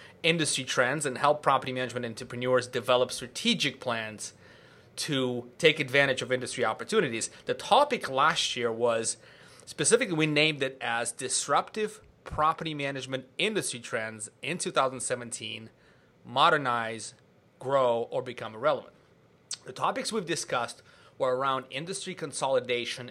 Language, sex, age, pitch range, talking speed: English, male, 30-49, 120-150 Hz, 120 wpm